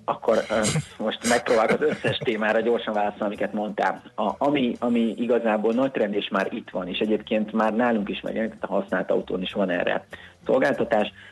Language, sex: Hungarian, male